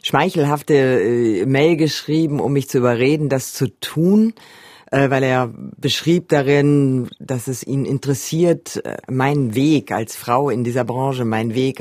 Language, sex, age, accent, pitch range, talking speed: German, female, 50-69, German, 120-150 Hz, 135 wpm